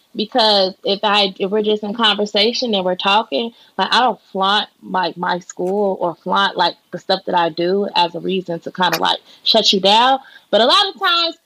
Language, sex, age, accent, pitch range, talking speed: English, female, 20-39, American, 190-265 Hz, 220 wpm